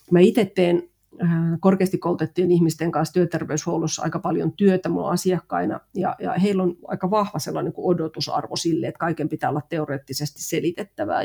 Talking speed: 140 wpm